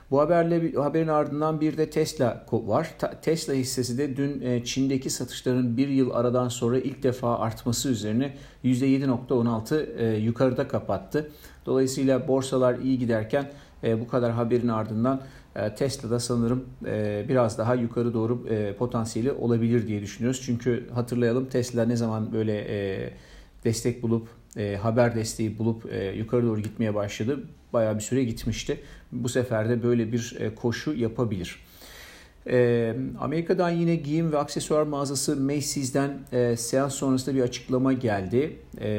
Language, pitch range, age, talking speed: Turkish, 115-135 Hz, 50-69, 130 wpm